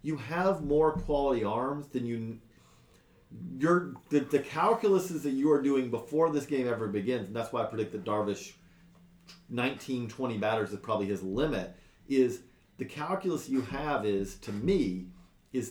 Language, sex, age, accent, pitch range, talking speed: English, male, 40-59, American, 105-150 Hz, 160 wpm